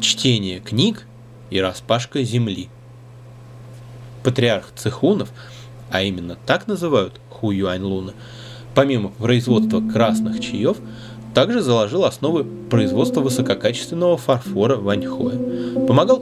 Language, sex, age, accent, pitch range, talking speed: Russian, male, 20-39, native, 110-135 Hz, 95 wpm